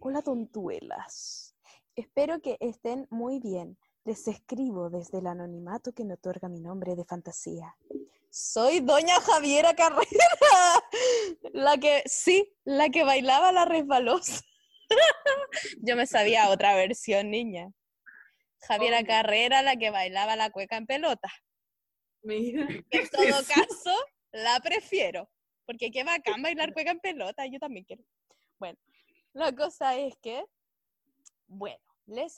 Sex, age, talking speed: female, 10-29, 125 wpm